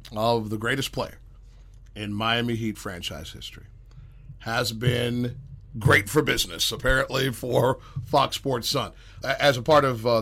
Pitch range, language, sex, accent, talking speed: 105-135 Hz, English, male, American, 140 wpm